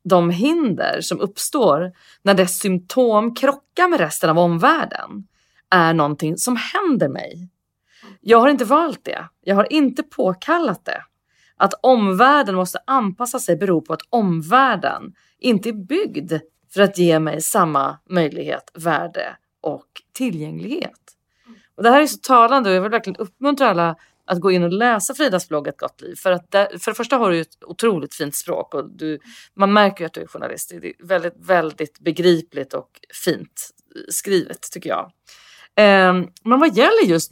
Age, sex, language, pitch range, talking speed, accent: 30-49, female, Swedish, 175-270 Hz, 170 wpm, native